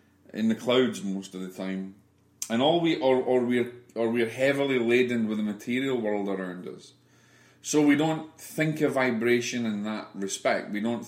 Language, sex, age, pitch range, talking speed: English, male, 30-49, 100-125 Hz, 185 wpm